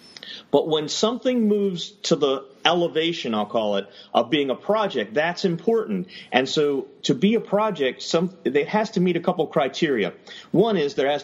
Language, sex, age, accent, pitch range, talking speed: English, male, 40-59, American, 130-195 Hz, 180 wpm